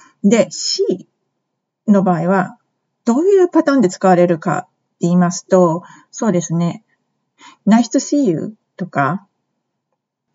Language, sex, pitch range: Japanese, female, 175-245 Hz